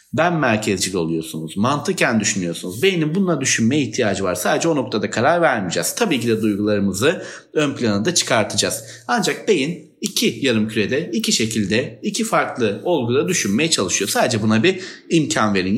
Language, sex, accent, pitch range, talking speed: Turkish, male, native, 110-180 Hz, 150 wpm